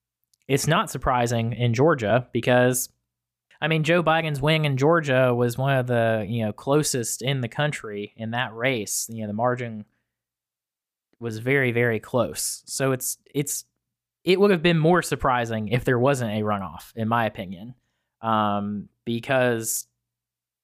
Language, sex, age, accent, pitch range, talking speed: English, male, 20-39, American, 115-140 Hz, 155 wpm